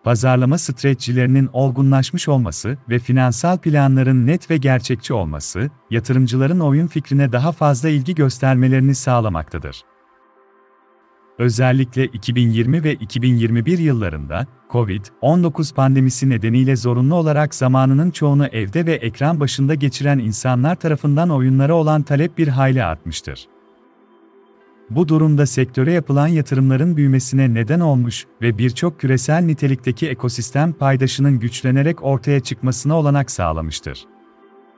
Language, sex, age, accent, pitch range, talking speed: Turkish, male, 40-59, native, 125-150 Hz, 110 wpm